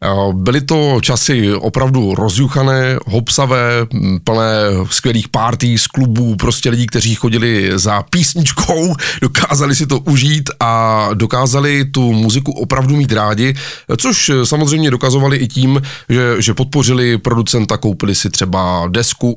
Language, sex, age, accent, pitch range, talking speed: Czech, male, 30-49, native, 105-135 Hz, 125 wpm